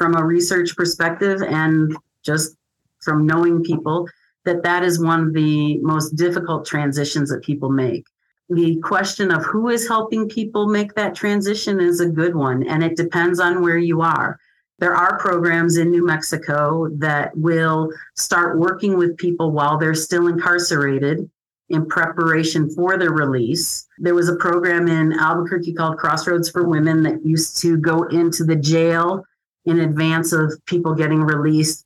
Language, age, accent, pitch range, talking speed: English, 40-59, American, 155-175 Hz, 160 wpm